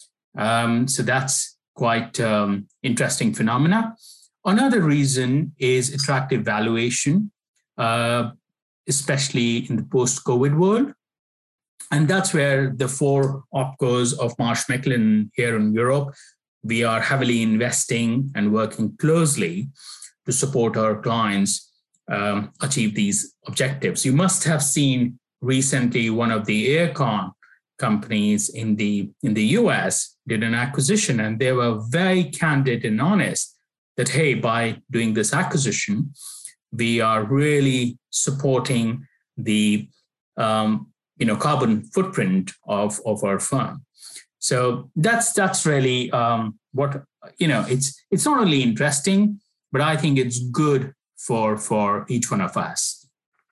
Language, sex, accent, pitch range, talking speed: English, male, Indian, 115-150 Hz, 130 wpm